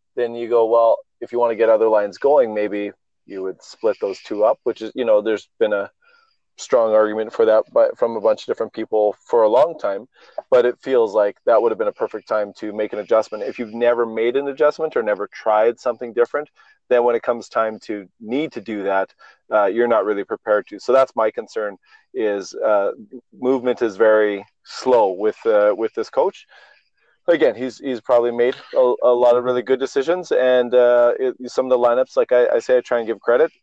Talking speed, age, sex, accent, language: 225 wpm, 30-49, male, American, English